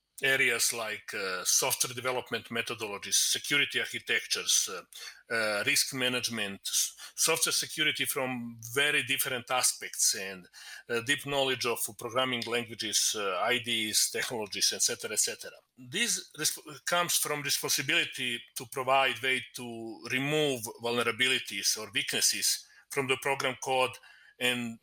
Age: 40-59